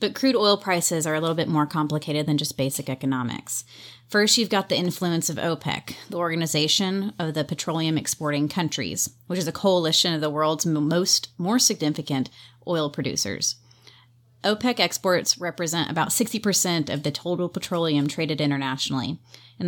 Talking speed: 160 wpm